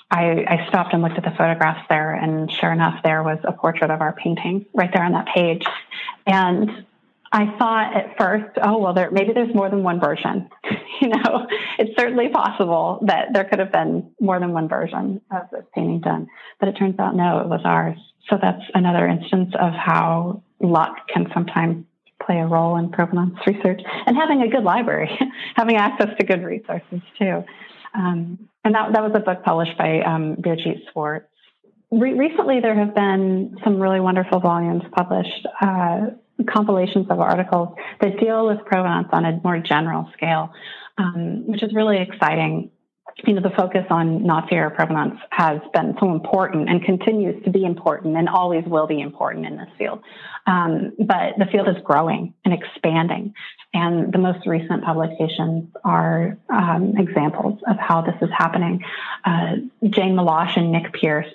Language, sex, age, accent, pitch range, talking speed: English, female, 30-49, American, 165-205 Hz, 175 wpm